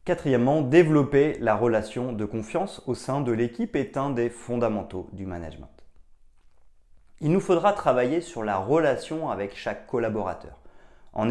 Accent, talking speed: French, 145 wpm